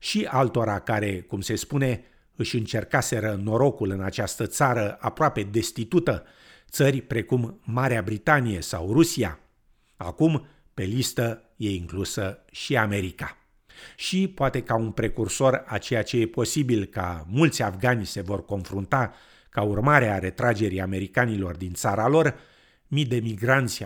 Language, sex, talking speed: Romanian, male, 135 wpm